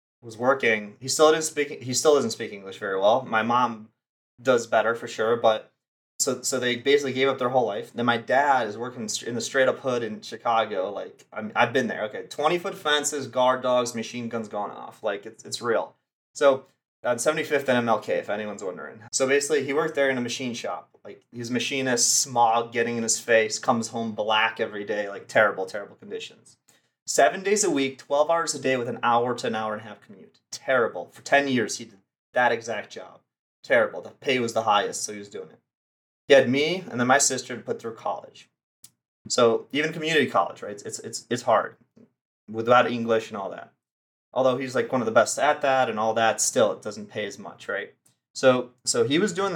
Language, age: English, 30-49